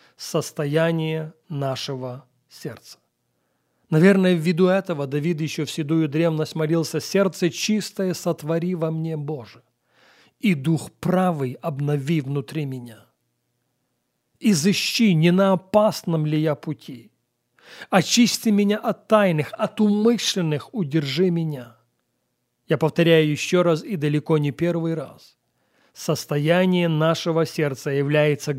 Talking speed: 110 wpm